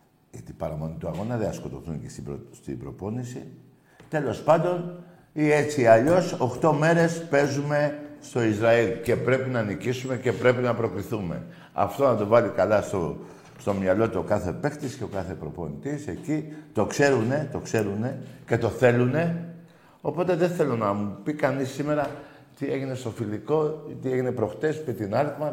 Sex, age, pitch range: male, 50-69, 105-150 Hz